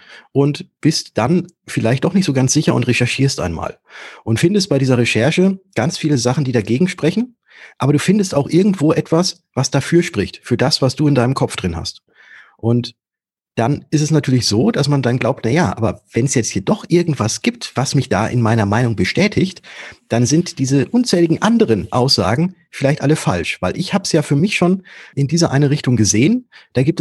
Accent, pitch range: German, 115-160 Hz